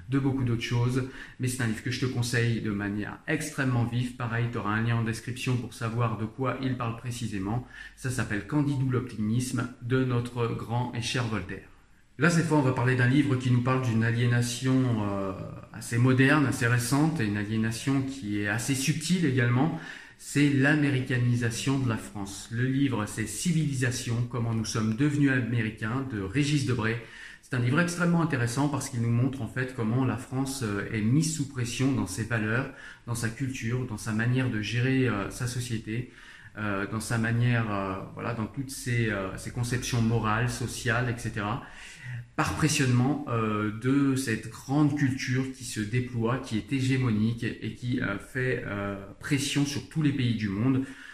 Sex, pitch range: male, 110-130 Hz